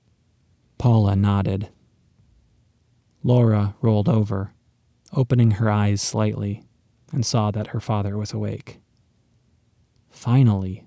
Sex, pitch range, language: male, 105-120 Hz, English